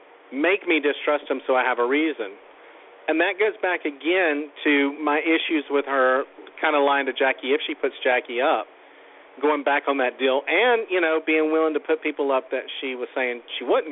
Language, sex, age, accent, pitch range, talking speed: English, male, 40-59, American, 130-165 Hz, 210 wpm